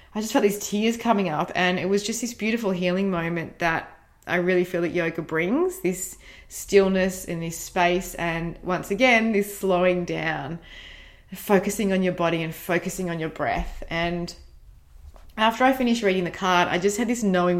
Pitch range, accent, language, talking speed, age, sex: 175-215 Hz, Australian, English, 185 wpm, 20-39, female